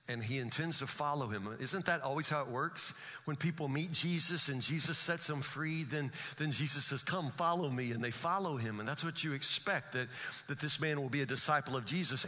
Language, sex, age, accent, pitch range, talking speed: English, male, 50-69, American, 125-160 Hz, 230 wpm